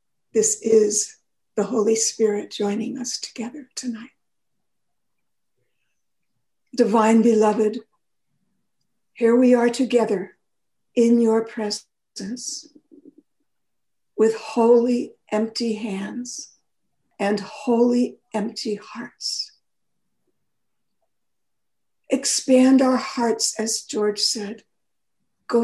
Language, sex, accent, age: English, female, American, 60-79